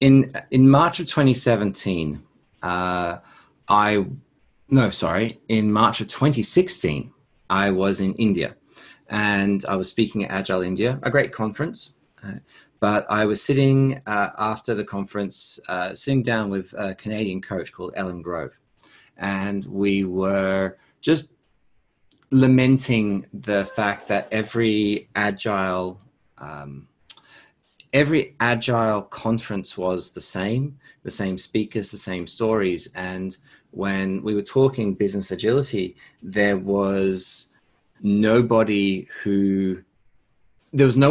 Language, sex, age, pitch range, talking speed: English, male, 30-49, 95-115 Hz, 120 wpm